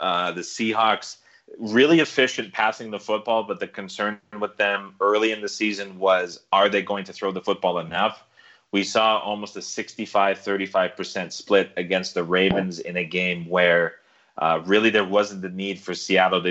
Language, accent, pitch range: English, American, 95-110 Hz